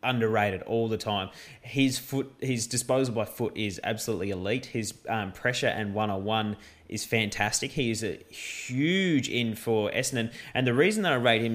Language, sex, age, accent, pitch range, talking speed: English, male, 20-39, Australian, 100-120 Hz, 175 wpm